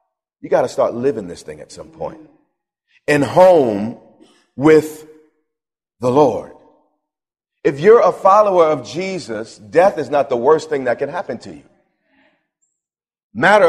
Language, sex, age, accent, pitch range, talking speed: English, male, 40-59, American, 155-230 Hz, 145 wpm